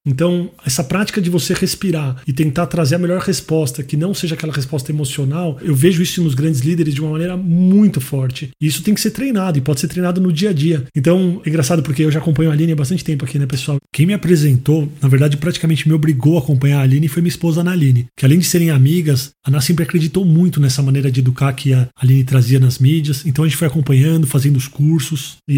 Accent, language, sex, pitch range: Brazilian, Portuguese, male, 145-180 Hz